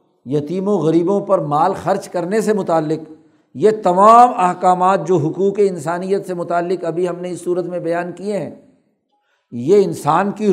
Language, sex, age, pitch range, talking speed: Urdu, male, 60-79, 170-205 Hz, 160 wpm